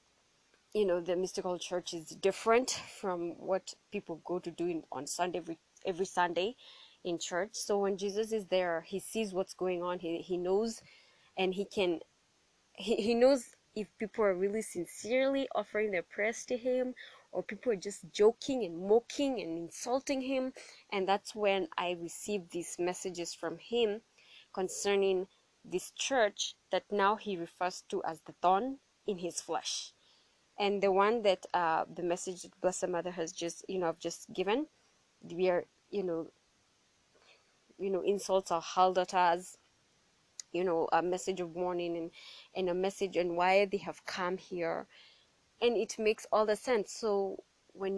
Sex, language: female, English